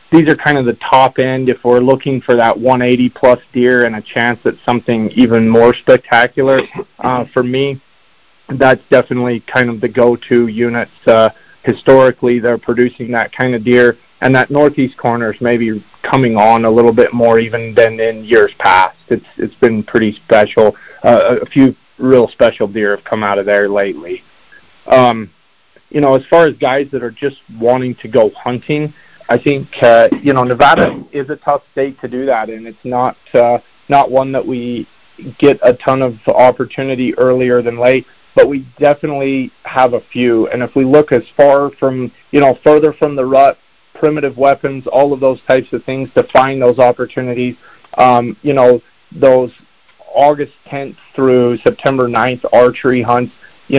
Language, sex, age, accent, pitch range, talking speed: English, male, 30-49, American, 120-135 Hz, 180 wpm